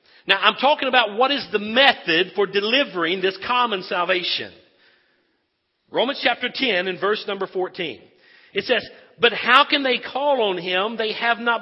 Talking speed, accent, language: 165 wpm, American, English